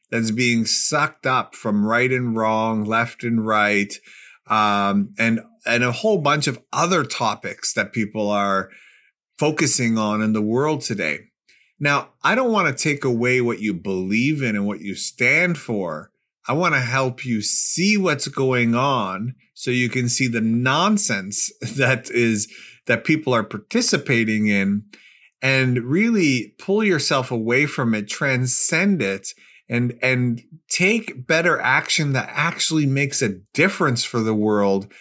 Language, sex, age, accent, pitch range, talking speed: English, male, 30-49, American, 110-140 Hz, 155 wpm